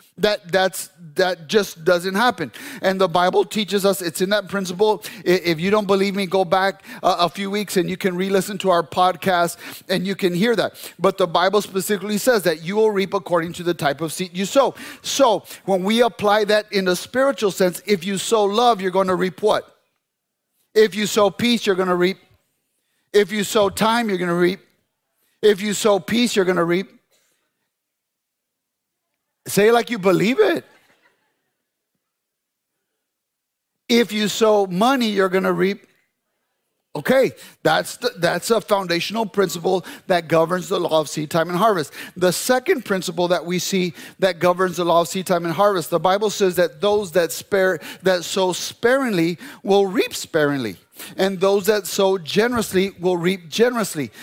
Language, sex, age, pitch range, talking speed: English, male, 30-49, 180-215 Hz, 180 wpm